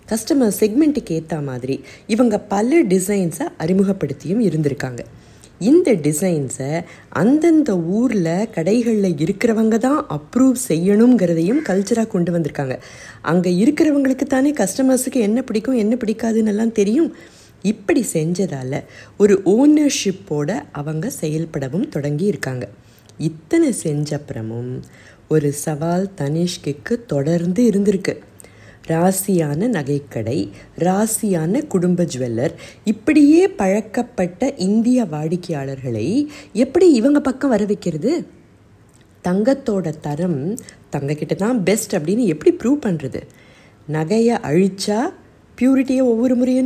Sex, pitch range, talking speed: female, 155-245 Hz, 95 wpm